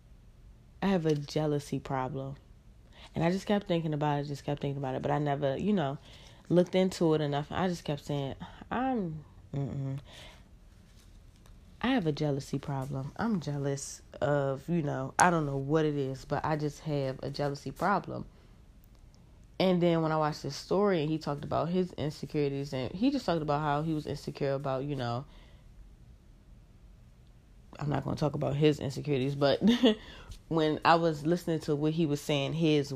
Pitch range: 140-175 Hz